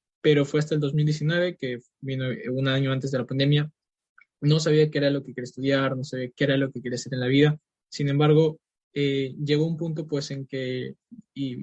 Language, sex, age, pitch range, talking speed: Spanish, male, 20-39, 135-155 Hz, 215 wpm